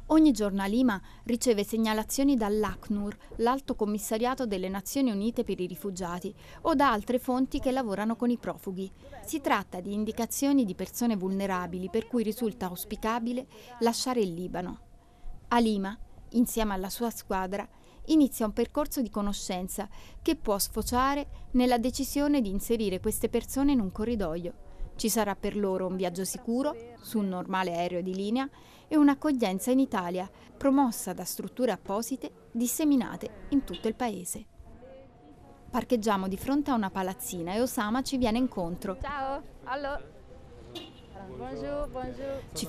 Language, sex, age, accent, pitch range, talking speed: Italian, female, 30-49, native, 195-260 Hz, 140 wpm